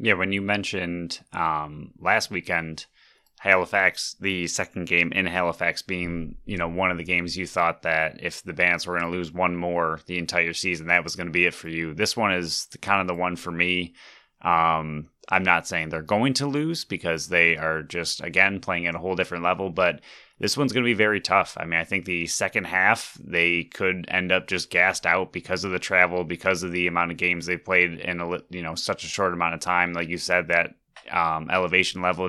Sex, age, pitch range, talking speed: male, 20-39, 85-95 Hz, 230 wpm